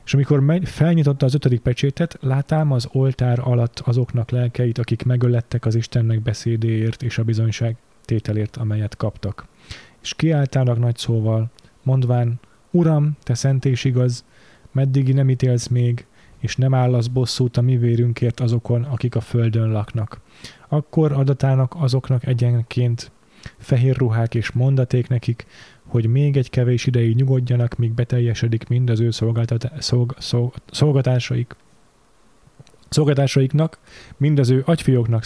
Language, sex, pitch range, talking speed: Hungarian, male, 115-130 Hz, 130 wpm